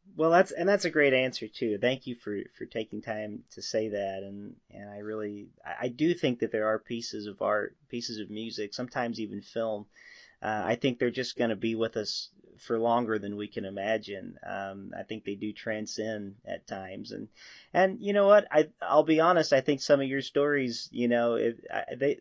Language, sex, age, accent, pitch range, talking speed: English, male, 30-49, American, 110-140 Hz, 215 wpm